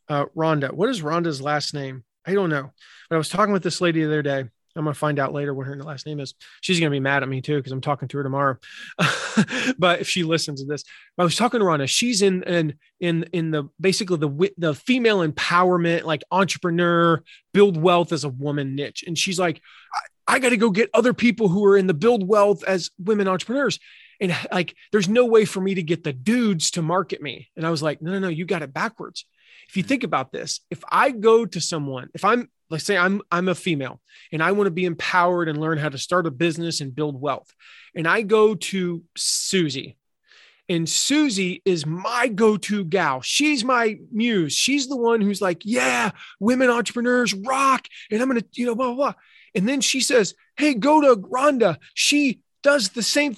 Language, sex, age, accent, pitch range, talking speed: English, male, 30-49, American, 160-230 Hz, 220 wpm